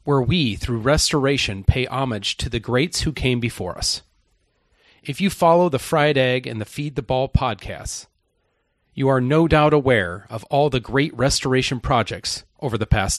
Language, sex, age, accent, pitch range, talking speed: English, male, 40-59, American, 110-145 Hz, 175 wpm